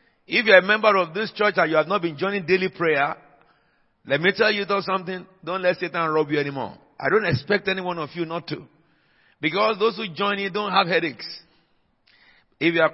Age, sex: 50-69, male